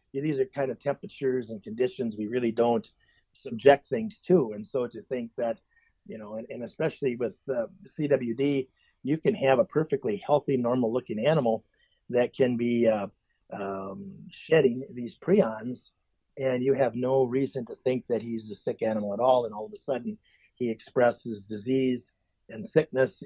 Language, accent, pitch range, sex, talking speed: English, American, 115-155 Hz, male, 175 wpm